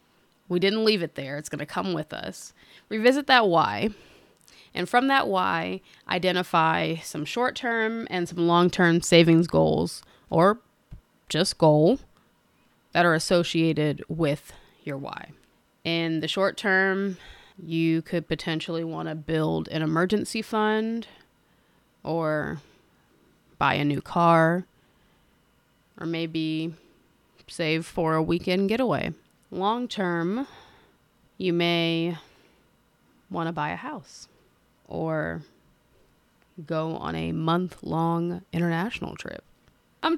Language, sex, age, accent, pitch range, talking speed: English, female, 20-39, American, 160-190 Hz, 110 wpm